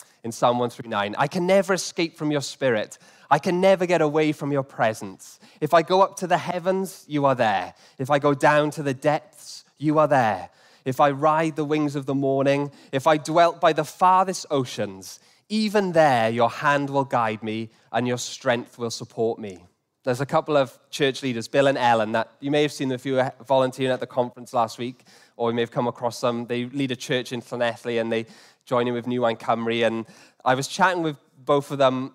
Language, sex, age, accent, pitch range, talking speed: English, male, 20-39, British, 120-150 Hz, 220 wpm